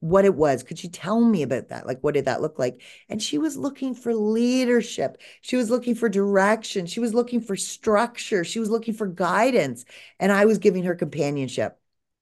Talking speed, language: 205 wpm, English